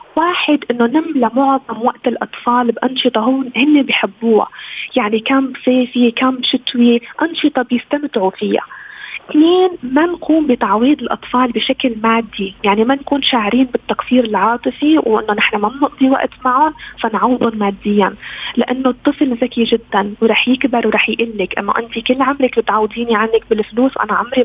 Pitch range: 225-265 Hz